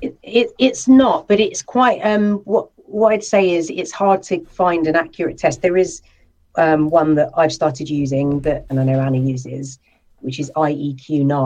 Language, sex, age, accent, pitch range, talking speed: English, female, 40-59, British, 135-165 Hz, 195 wpm